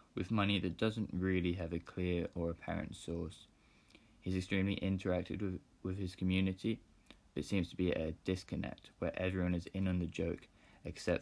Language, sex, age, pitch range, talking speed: English, male, 20-39, 85-95 Hz, 170 wpm